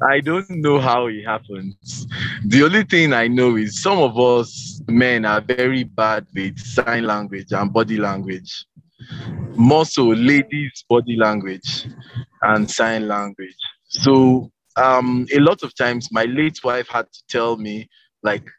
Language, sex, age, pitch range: English, male, 20-39, 105-130 Hz